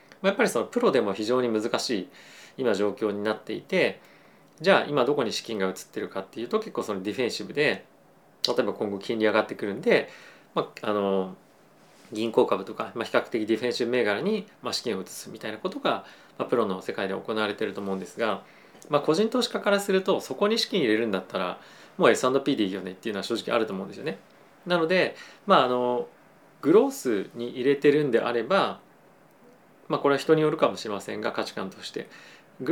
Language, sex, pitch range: Japanese, male, 105-170 Hz